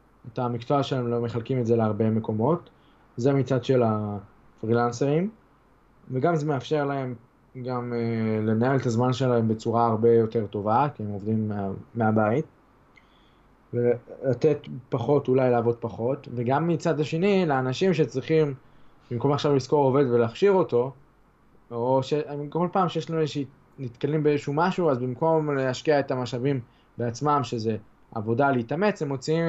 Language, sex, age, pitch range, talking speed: Hebrew, male, 20-39, 115-145 Hz, 140 wpm